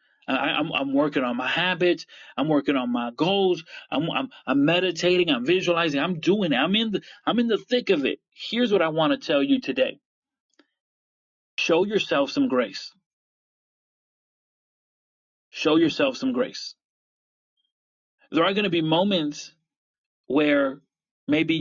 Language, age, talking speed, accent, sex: English, 30-49, 150 wpm, American, male